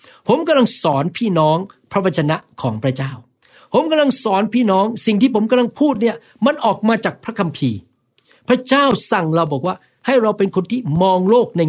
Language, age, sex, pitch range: Thai, 60-79, male, 150-220 Hz